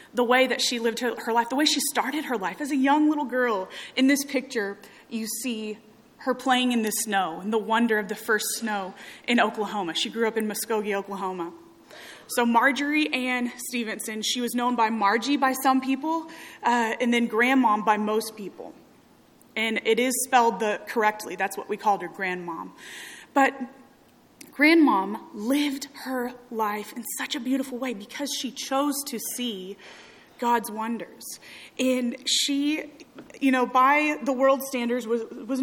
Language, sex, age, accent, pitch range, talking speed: English, female, 20-39, American, 220-265 Hz, 170 wpm